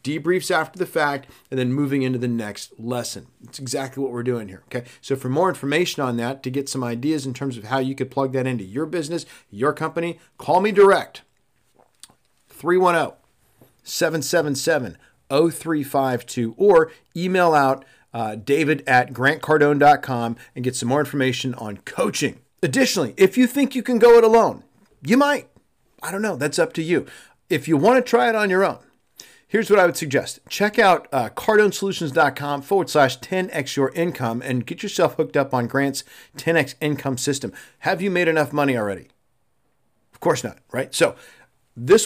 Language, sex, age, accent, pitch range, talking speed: English, male, 50-69, American, 130-175 Hz, 175 wpm